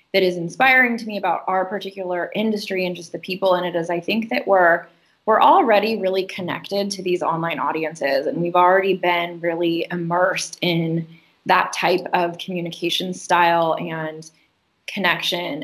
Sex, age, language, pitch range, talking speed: female, 20-39, English, 175-200 Hz, 160 wpm